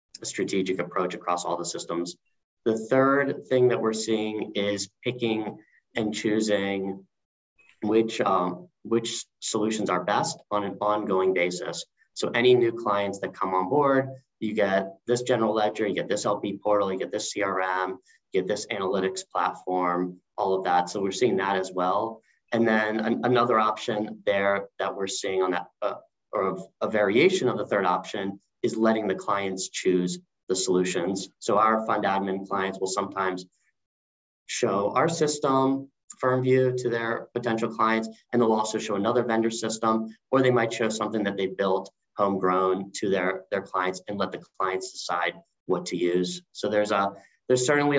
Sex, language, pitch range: male, English, 95-115 Hz